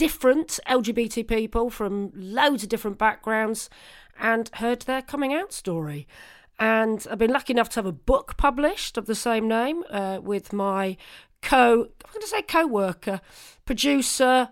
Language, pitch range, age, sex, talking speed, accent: English, 195-250 Hz, 40-59, female, 160 wpm, British